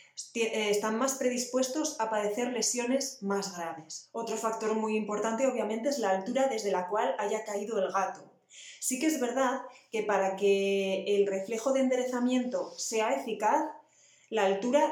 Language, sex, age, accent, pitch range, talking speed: Spanish, female, 20-39, Spanish, 200-240 Hz, 155 wpm